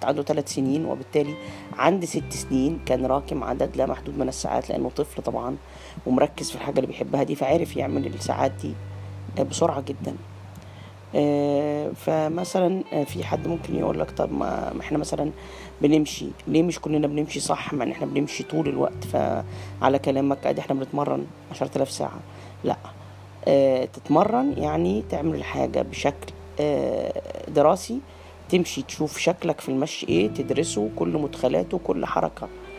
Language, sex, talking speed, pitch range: Arabic, female, 135 wpm, 95-155 Hz